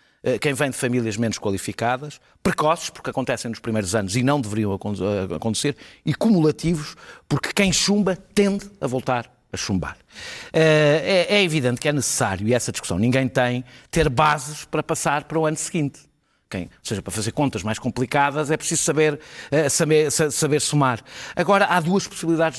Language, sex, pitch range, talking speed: Portuguese, male, 125-170 Hz, 160 wpm